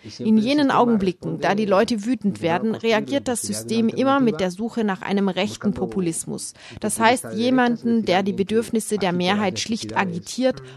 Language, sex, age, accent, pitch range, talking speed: German, female, 30-49, German, 180-225 Hz, 160 wpm